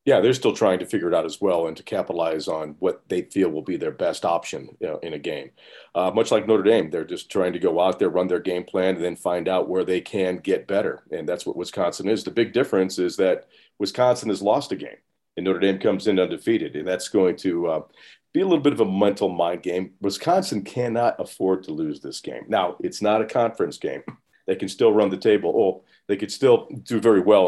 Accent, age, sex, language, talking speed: American, 40-59, male, English, 240 wpm